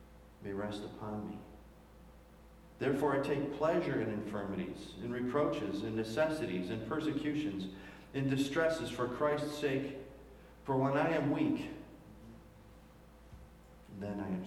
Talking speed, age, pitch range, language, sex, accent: 120 wpm, 50-69, 115-170 Hz, English, male, American